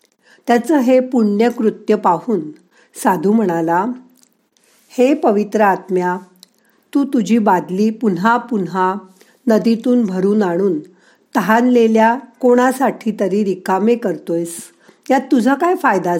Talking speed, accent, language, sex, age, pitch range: 105 wpm, native, Marathi, female, 50-69, 185-245 Hz